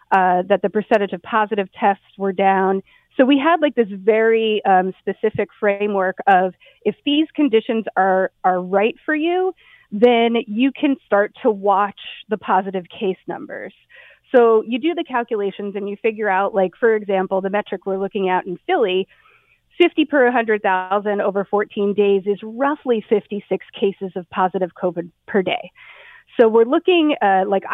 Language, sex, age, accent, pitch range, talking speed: English, female, 30-49, American, 195-230 Hz, 165 wpm